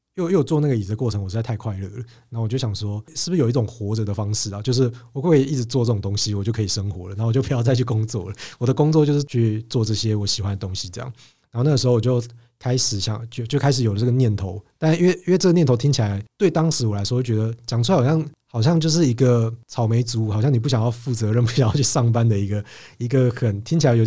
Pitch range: 110-130 Hz